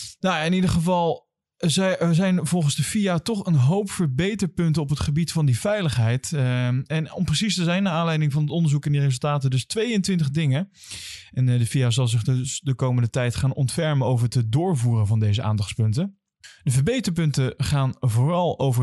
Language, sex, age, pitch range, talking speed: Dutch, male, 20-39, 120-165 Hz, 180 wpm